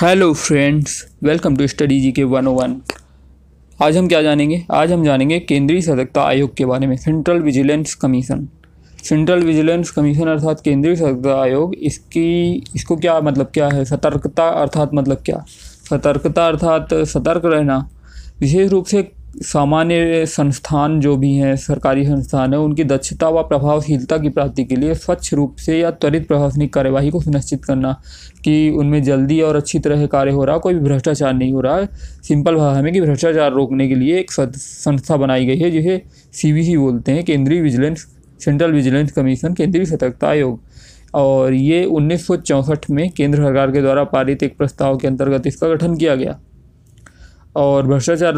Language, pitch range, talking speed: Hindi, 135-160 Hz, 165 wpm